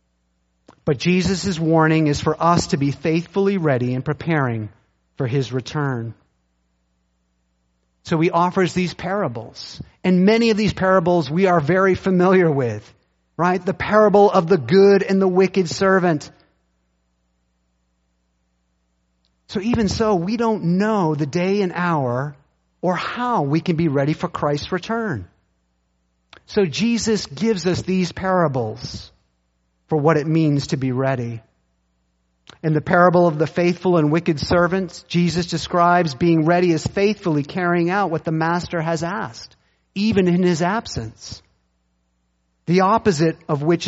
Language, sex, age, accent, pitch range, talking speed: English, male, 30-49, American, 110-180 Hz, 140 wpm